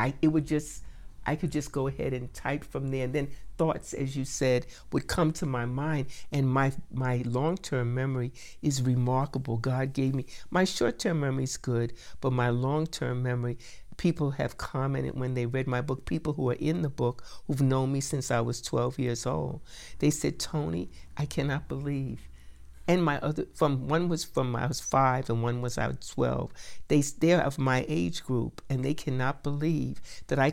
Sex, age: male, 60-79